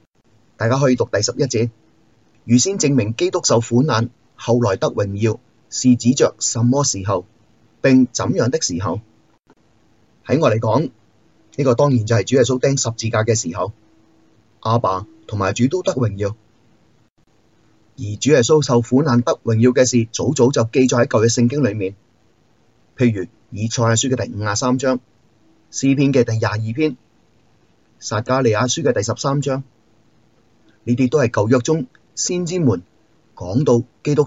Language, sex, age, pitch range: Chinese, male, 30-49, 110-130 Hz